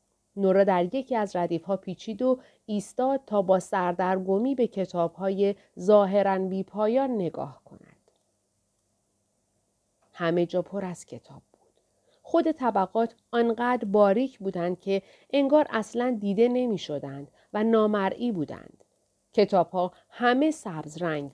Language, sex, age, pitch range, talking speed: Persian, female, 40-59, 175-225 Hz, 120 wpm